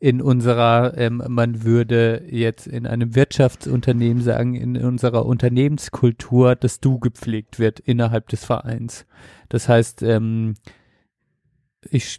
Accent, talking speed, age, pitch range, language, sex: German, 120 wpm, 40-59, 115-130 Hz, German, male